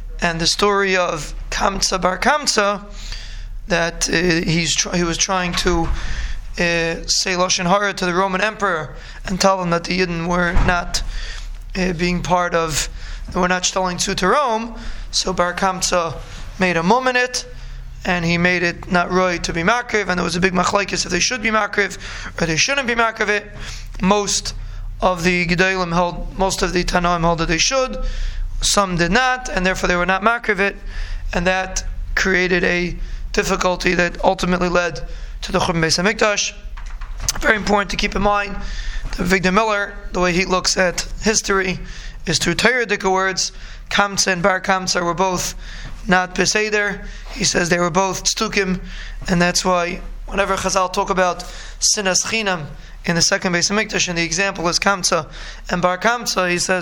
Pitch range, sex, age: 175-200 Hz, male, 20-39